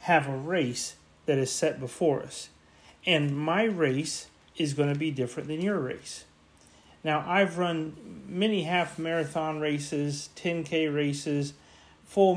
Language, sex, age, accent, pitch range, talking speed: English, male, 40-59, American, 135-170 Hz, 135 wpm